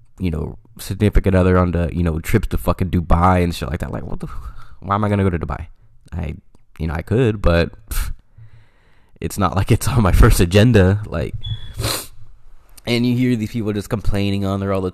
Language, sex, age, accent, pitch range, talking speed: English, male, 20-39, American, 90-105 Hz, 210 wpm